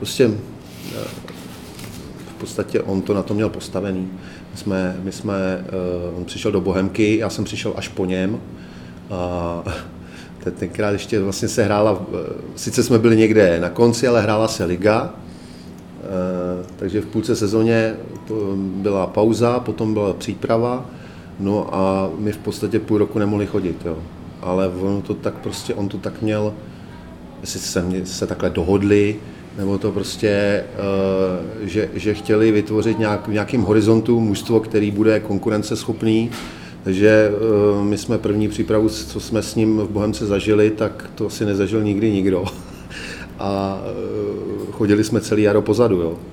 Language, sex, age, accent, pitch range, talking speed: Czech, male, 40-59, native, 95-110 Hz, 140 wpm